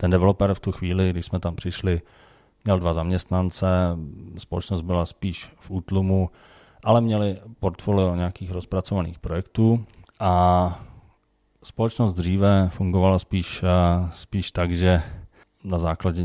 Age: 30-49